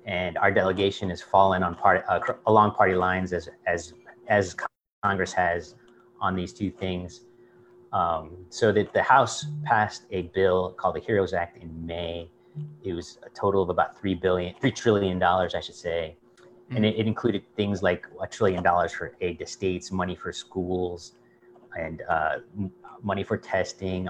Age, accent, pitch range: 30-49, American, 90-120 Hz